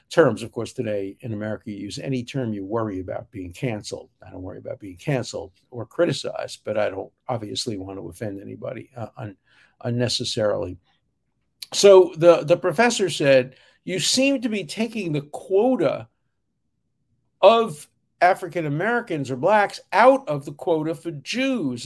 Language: English